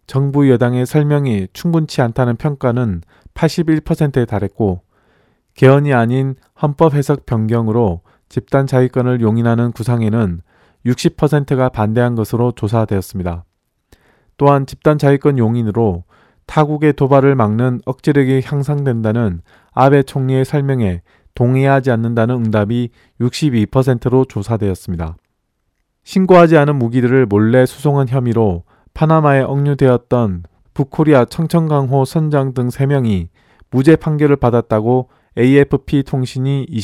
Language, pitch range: Korean, 110-140 Hz